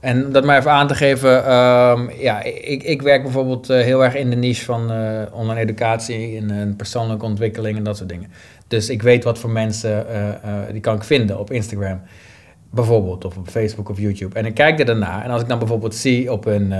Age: 20-39